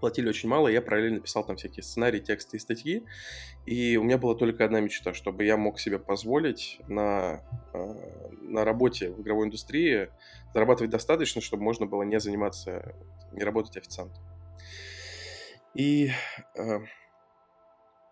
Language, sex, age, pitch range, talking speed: Russian, male, 20-39, 105-120 Hz, 140 wpm